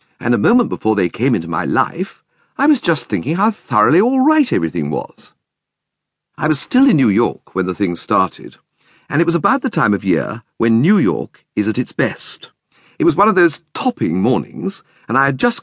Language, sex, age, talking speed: English, male, 50-69, 210 wpm